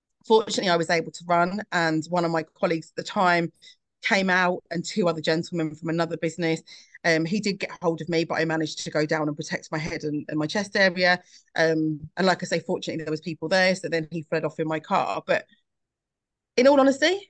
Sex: female